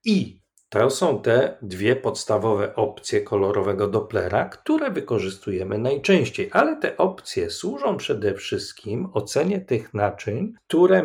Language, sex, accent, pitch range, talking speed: Polish, male, native, 105-150 Hz, 120 wpm